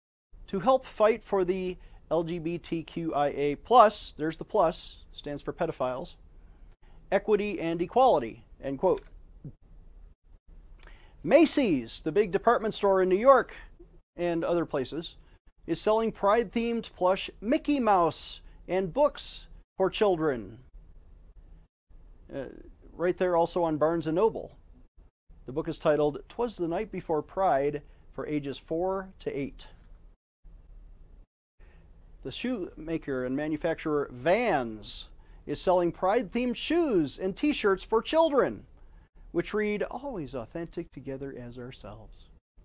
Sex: male